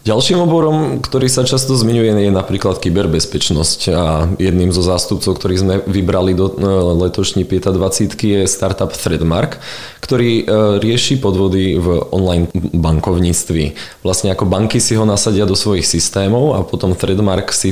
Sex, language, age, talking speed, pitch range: male, Czech, 20-39, 140 wpm, 85-100 Hz